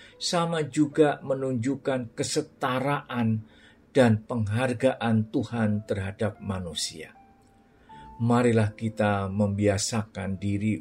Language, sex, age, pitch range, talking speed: Indonesian, male, 40-59, 105-130 Hz, 70 wpm